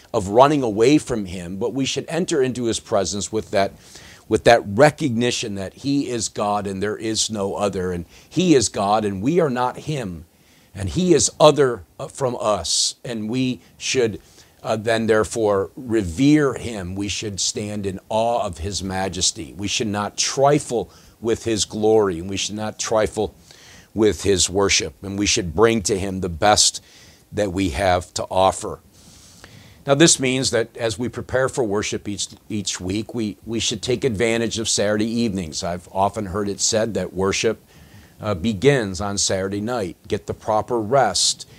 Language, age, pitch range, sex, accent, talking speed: English, 50-69, 95-120 Hz, male, American, 175 wpm